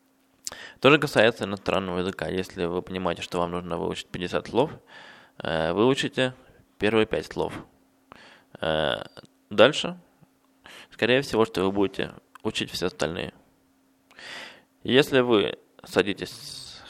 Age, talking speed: 20-39, 105 wpm